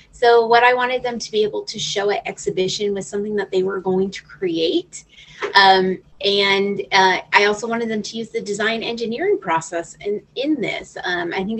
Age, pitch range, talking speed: 30-49, 180-215 Hz, 200 wpm